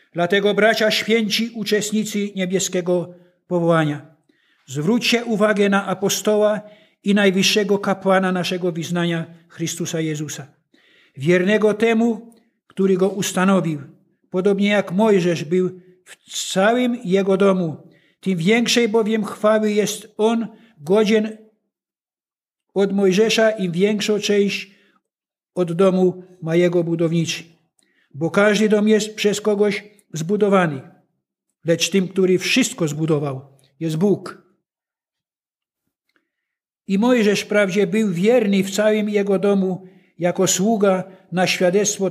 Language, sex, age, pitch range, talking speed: Polish, male, 60-79, 175-215 Hz, 105 wpm